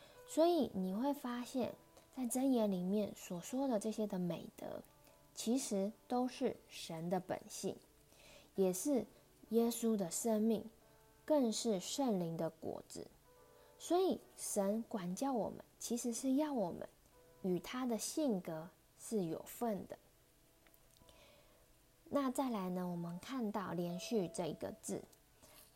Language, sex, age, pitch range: Chinese, female, 20-39, 185-245 Hz